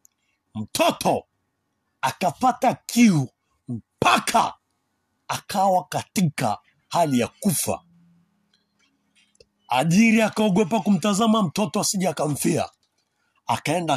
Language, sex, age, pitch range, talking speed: Swahili, male, 60-79, 125-195 Hz, 70 wpm